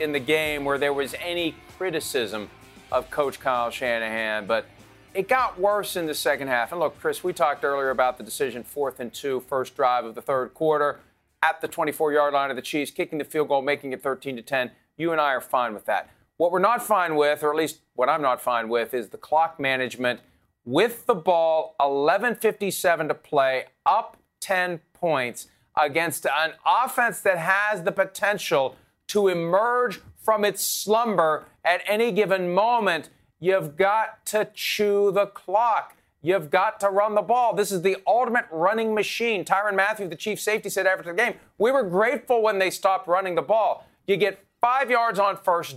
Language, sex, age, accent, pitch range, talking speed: English, male, 40-59, American, 145-210 Hz, 190 wpm